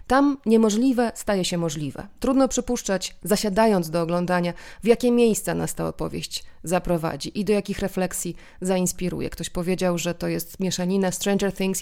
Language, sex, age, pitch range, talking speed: Polish, female, 30-49, 180-225 Hz, 150 wpm